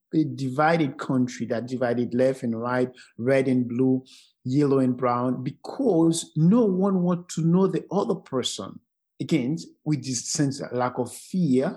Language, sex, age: English, male, 50-69